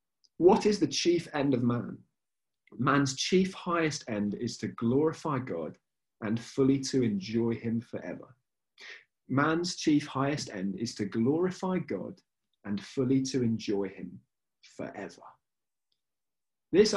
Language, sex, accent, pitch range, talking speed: English, male, British, 120-170 Hz, 125 wpm